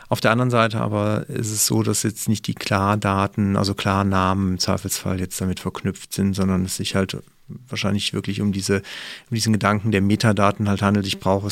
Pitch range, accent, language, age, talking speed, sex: 100-115 Hz, German, German, 40-59, 200 wpm, male